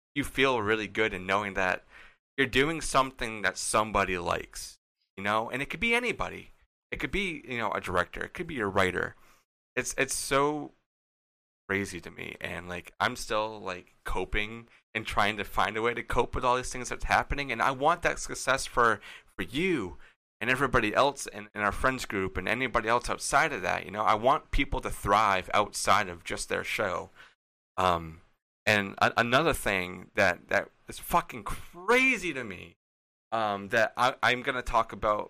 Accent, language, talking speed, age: American, English, 190 wpm, 30-49